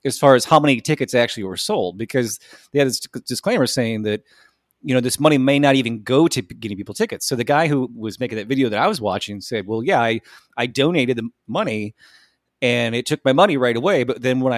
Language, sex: English, male